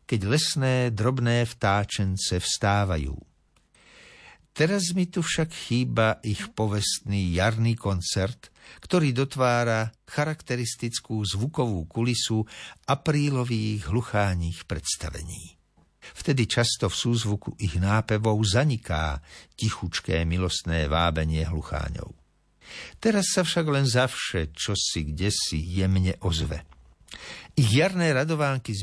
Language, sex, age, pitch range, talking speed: Slovak, male, 60-79, 95-130 Hz, 100 wpm